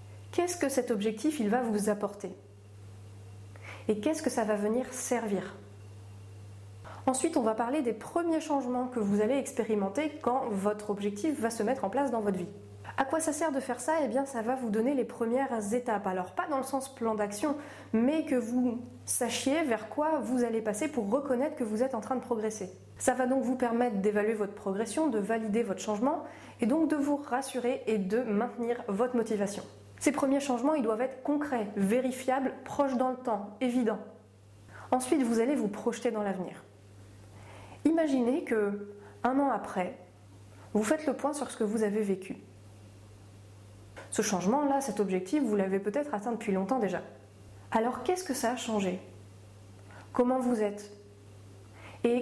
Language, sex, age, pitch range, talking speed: French, female, 30-49, 185-255 Hz, 180 wpm